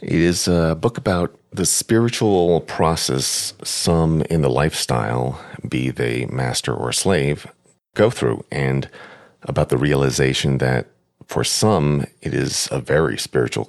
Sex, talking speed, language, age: male, 135 wpm, English, 50-69